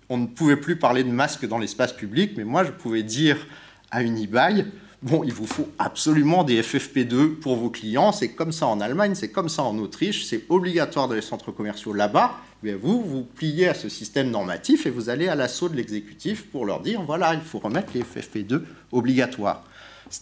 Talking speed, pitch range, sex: 210 wpm, 110-150 Hz, male